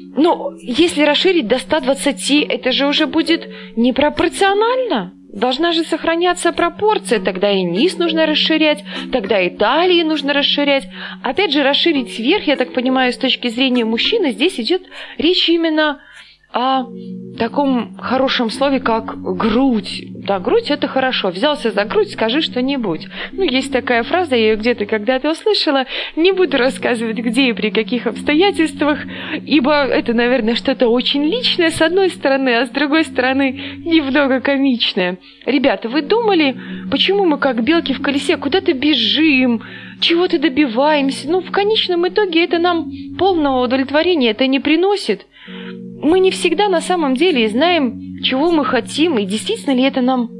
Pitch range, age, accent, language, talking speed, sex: 245-330 Hz, 20-39, native, Russian, 150 wpm, female